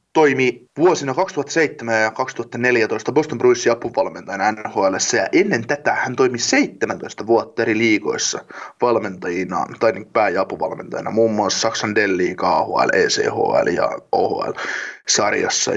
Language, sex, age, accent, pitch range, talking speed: Finnish, male, 20-39, native, 110-130 Hz, 120 wpm